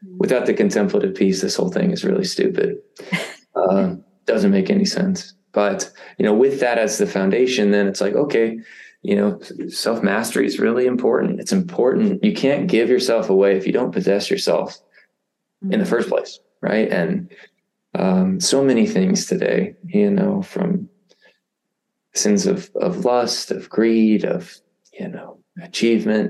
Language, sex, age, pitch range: English, male, 20-39, 120-200 Hz